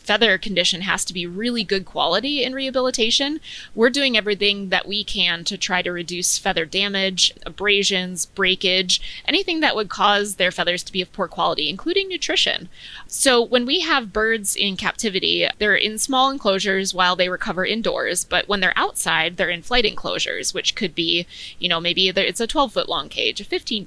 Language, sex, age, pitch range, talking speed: English, female, 20-39, 185-230 Hz, 185 wpm